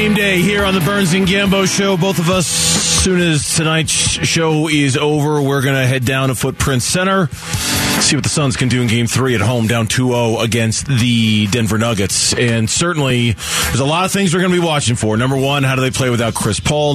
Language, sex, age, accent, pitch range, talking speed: English, male, 30-49, American, 120-150 Hz, 235 wpm